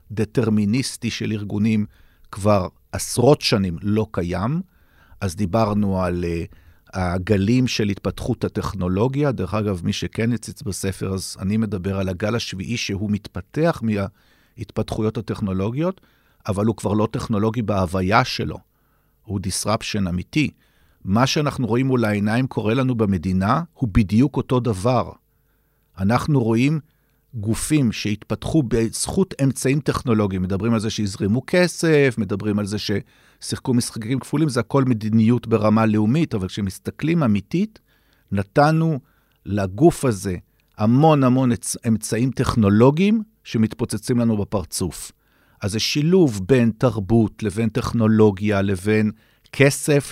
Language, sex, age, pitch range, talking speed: Hebrew, male, 50-69, 100-125 Hz, 120 wpm